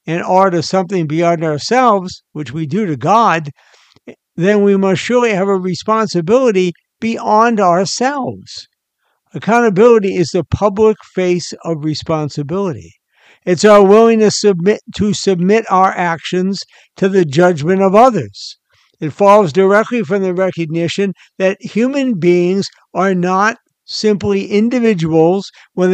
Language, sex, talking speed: English, male, 125 wpm